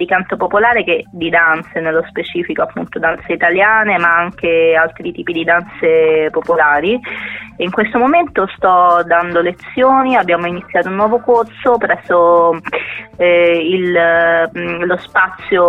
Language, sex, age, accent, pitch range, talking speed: Italian, female, 20-39, native, 170-195 Hz, 140 wpm